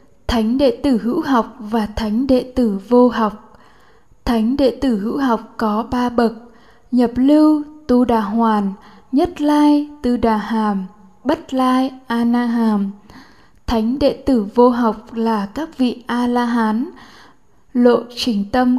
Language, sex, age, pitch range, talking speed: Vietnamese, female, 10-29, 225-265 Hz, 145 wpm